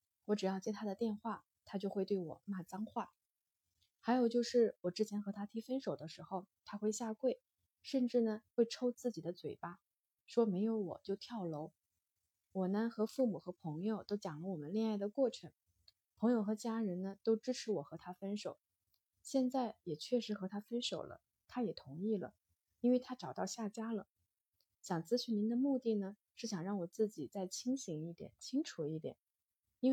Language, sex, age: Chinese, female, 20-39